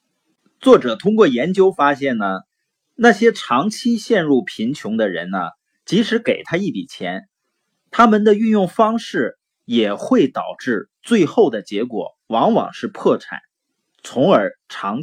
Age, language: 30-49, Chinese